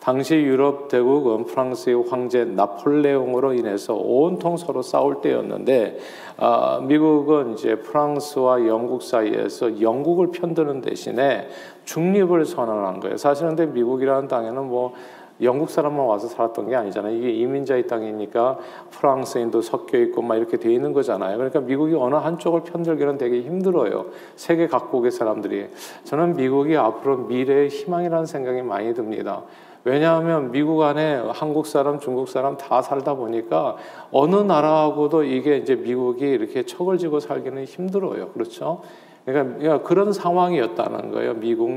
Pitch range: 125-160 Hz